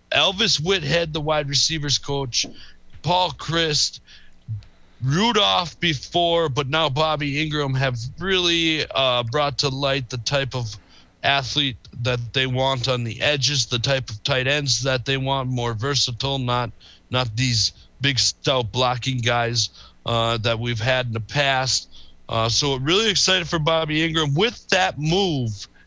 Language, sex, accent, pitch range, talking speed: English, male, American, 110-140 Hz, 150 wpm